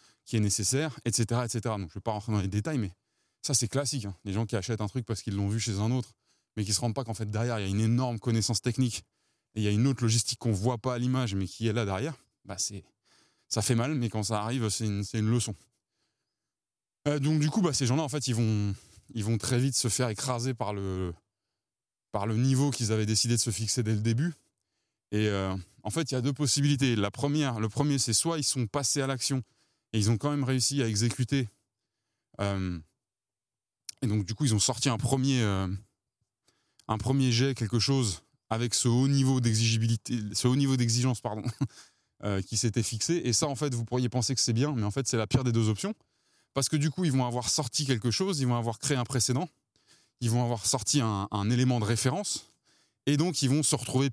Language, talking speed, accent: French, 235 wpm, French